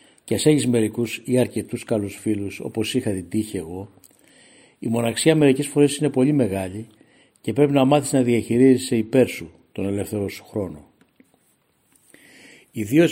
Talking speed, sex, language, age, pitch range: 150 wpm, male, Greek, 60-79, 110-135 Hz